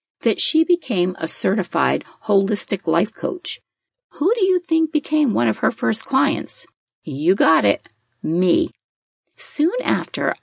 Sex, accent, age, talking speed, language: female, American, 50-69, 140 wpm, English